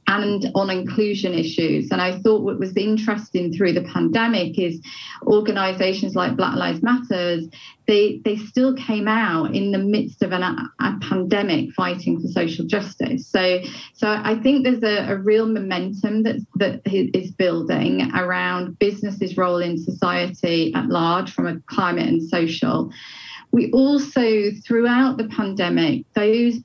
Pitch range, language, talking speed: 180-220 Hz, English, 150 wpm